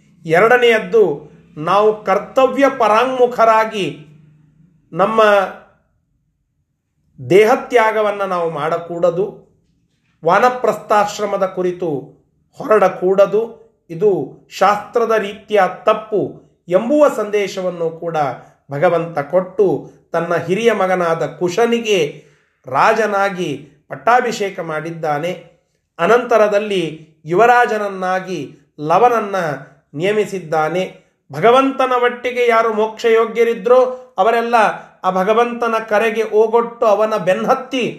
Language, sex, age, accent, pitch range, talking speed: Kannada, male, 30-49, native, 175-230 Hz, 70 wpm